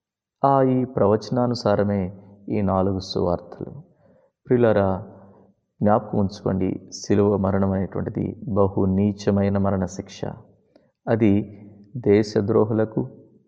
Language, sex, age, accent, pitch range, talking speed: English, male, 30-49, Indian, 100-115 Hz, 75 wpm